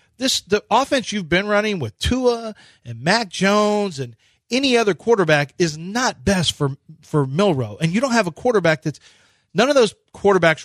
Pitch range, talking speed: 140-195 Hz, 180 wpm